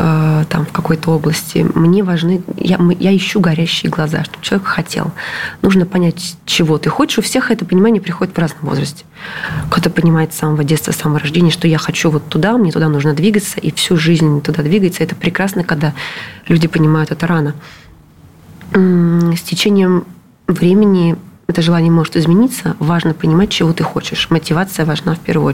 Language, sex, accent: Russian, female, native